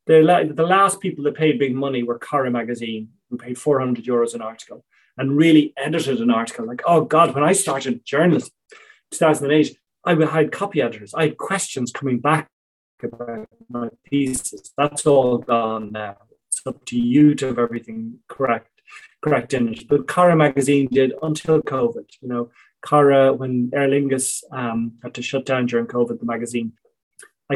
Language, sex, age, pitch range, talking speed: English, male, 30-49, 125-160 Hz, 170 wpm